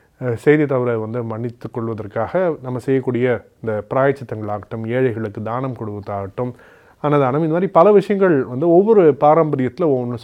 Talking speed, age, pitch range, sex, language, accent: 125 wpm, 30-49, 110-150 Hz, male, Tamil, native